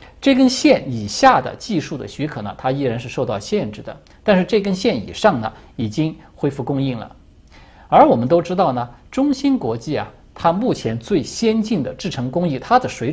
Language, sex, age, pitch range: Chinese, male, 50-69, 120-185 Hz